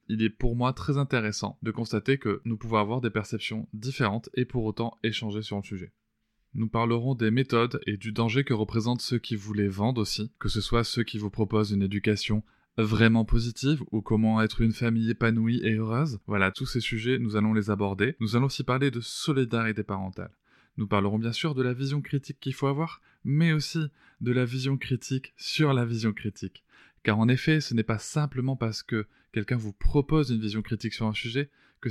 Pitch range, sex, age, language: 105-125 Hz, male, 20-39, French